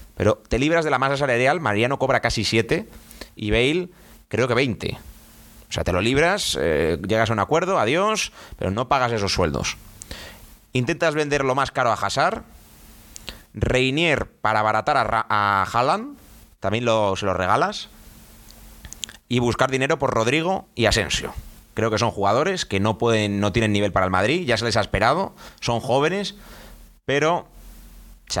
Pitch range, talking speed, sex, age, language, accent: 100-135 Hz, 165 wpm, male, 30-49, Spanish, Spanish